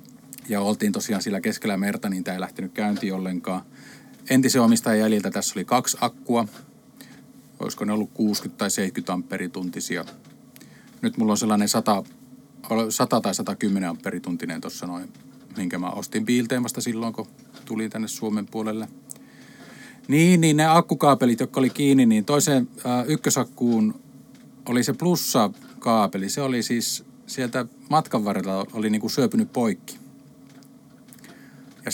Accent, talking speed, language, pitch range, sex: native, 135 wpm, Finnish, 110-145 Hz, male